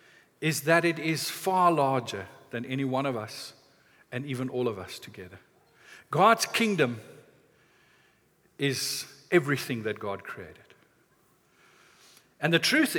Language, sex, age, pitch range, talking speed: English, male, 50-69, 140-220 Hz, 125 wpm